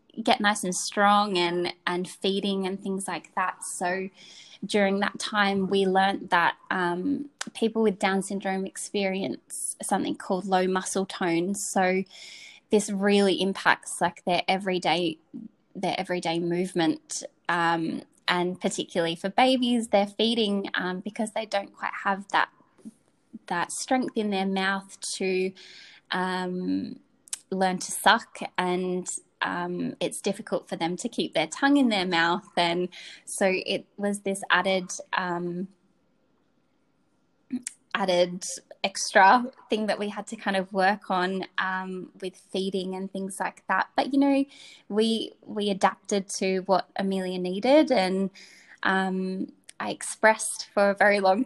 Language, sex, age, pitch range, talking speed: English, female, 10-29, 185-210 Hz, 140 wpm